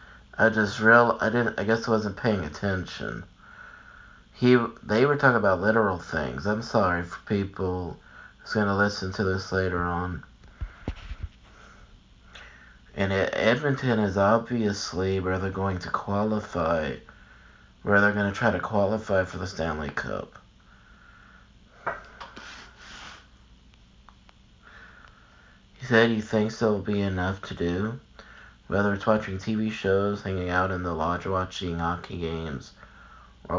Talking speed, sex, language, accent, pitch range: 130 wpm, male, English, American, 90-105 Hz